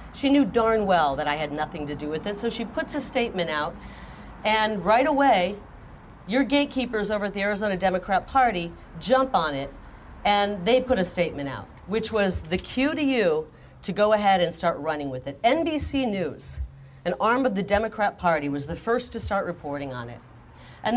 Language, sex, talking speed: Swedish, female, 195 wpm